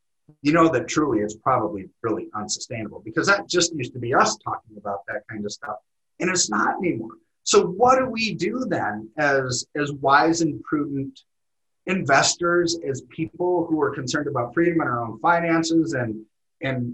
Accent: American